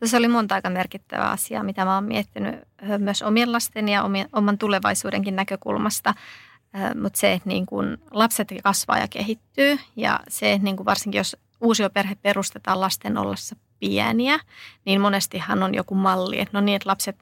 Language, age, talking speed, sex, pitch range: Finnish, 30-49, 155 wpm, female, 190-215 Hz